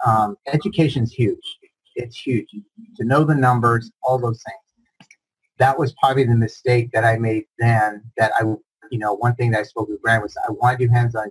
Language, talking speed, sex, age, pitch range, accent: English, 205 wpm, male, 30-49, 115-135 Hz, American